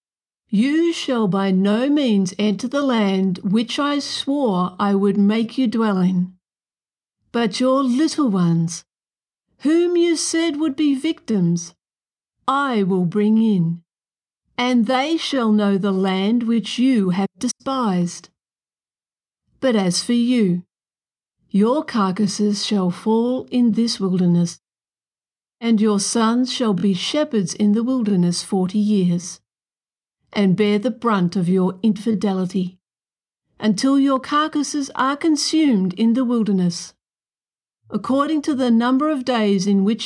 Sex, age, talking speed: female, 50-69, 130 wpm